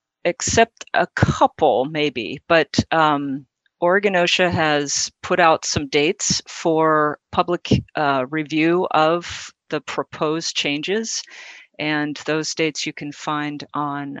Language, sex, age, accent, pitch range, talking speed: English, female, 50-69, American, 145-165 Hz, 120 wpm